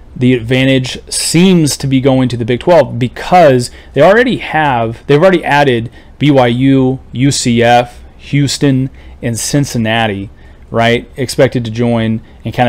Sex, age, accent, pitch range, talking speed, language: male, 30-49, American, 110-145 Hz, 130 wpm, English